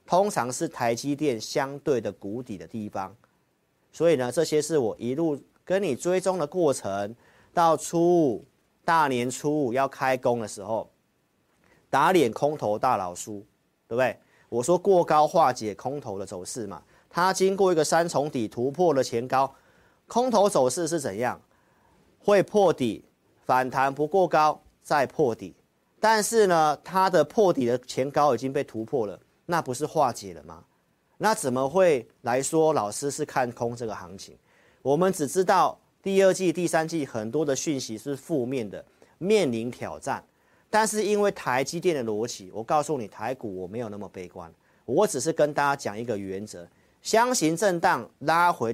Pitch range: 115-165 Hz